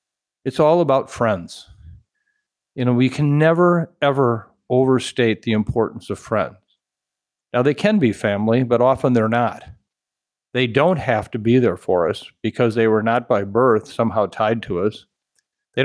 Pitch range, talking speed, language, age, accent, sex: 115-145 Hz, 165 wpm, English, 50-69, American, male